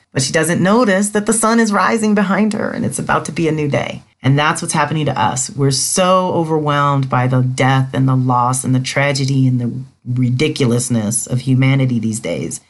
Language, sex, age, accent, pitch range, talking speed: English, female, 40-59, American, 130-195 Hz, 210 wpm